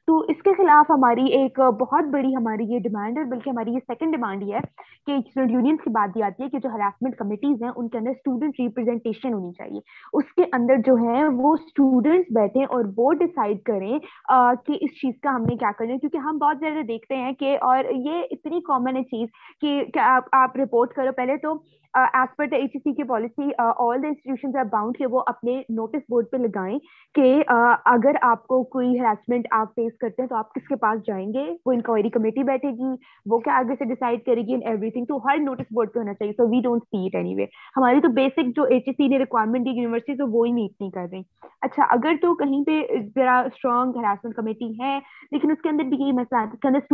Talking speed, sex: 130 wpm, female